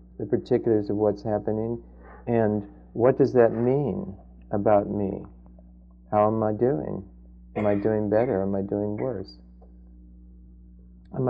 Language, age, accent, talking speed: English, 50-69, American, 140 wpm